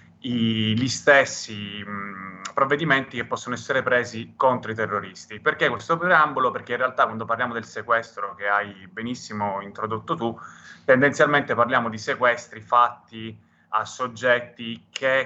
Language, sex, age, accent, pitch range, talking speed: Italian, male, 20-39, native, 110-130 Hz, 135 wpm